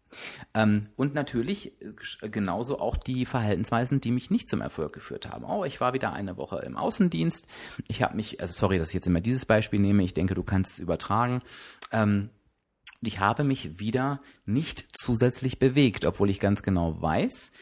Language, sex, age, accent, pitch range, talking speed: German, male, 30-49, German, 100-135 Hz, 175 wpm